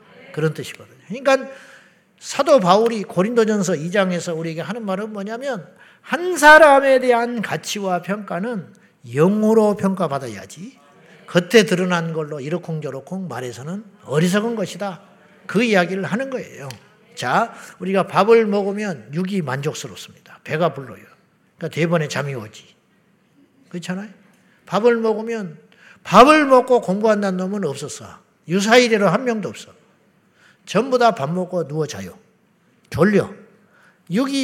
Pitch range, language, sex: 160-215 Hz, Korean, male